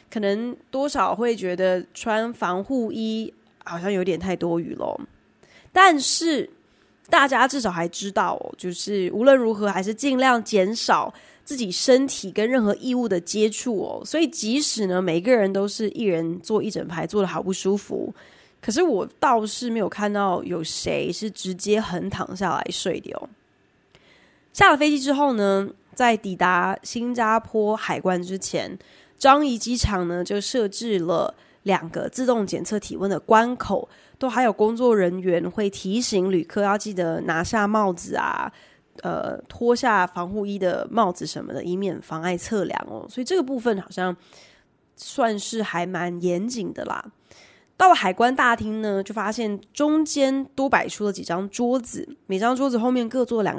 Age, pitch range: 20-39, 185-250 Hz